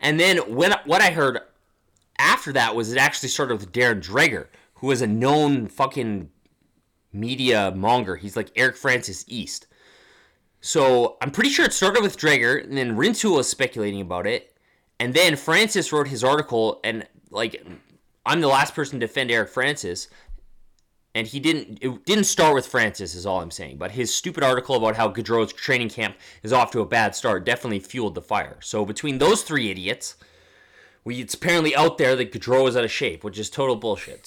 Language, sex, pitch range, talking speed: English, male, 110-150 Hz, 190 wpm